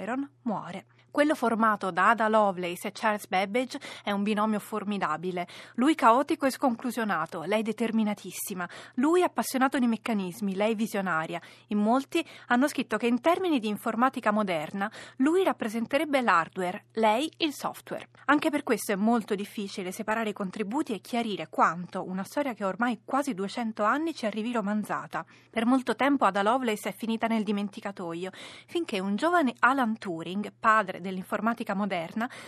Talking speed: 150 wpm